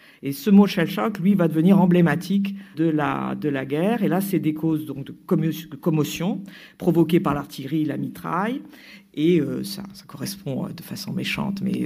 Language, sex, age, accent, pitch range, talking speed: French, female, 50-69, French, 145-195 Hz, 195 wpm